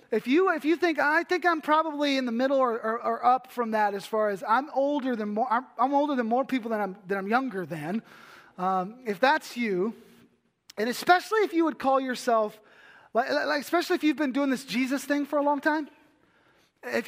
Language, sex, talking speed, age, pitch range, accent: English, male, 220 wpm, 20-39, 165-250 Hz, American